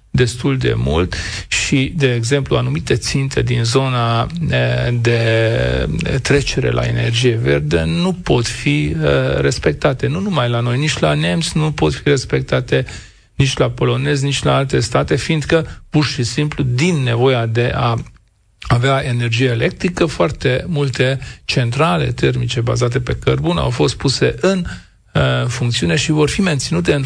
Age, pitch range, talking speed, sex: 40-59, 120-140 Hz, 145 wpm, male